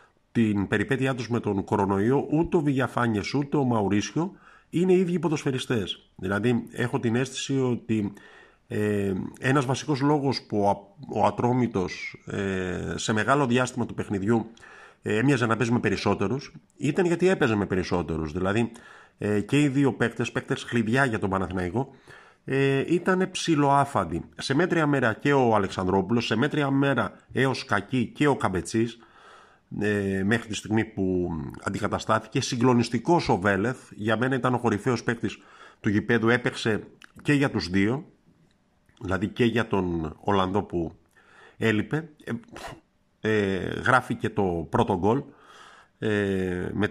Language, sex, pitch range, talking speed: Greek, male, 100-135 Hz, 135 wpm